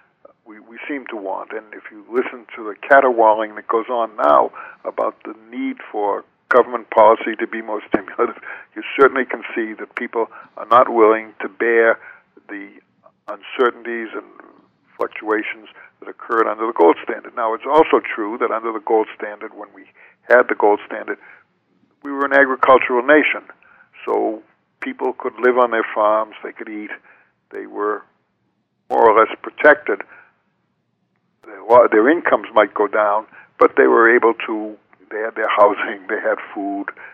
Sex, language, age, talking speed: male, English, 60-79, 160 wpm